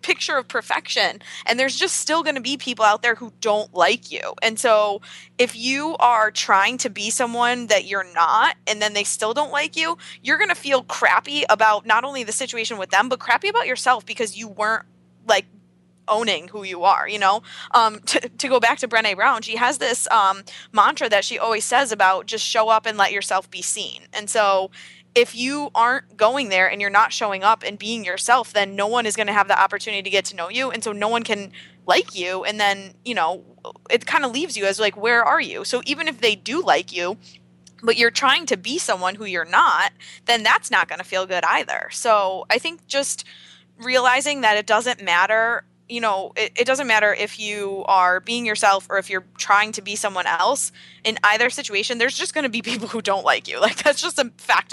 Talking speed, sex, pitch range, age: 230 wpm, female, 200-245 Hz, 20-39